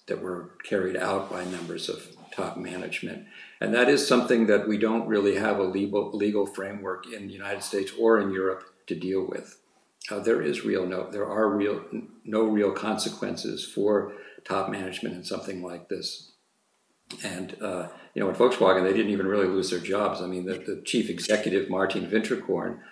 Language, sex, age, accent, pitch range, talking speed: English, male, 50-69, American, 90-100 Hz, 190 wpm